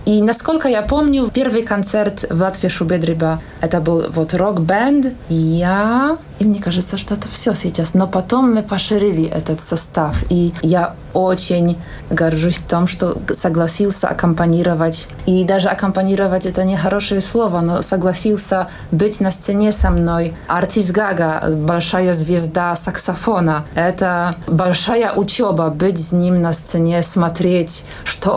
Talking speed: 135 wpm